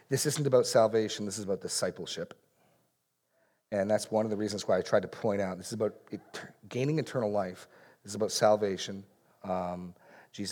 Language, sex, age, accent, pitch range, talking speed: English, male, 40-59, American, 100-130 Hz, 195 wpm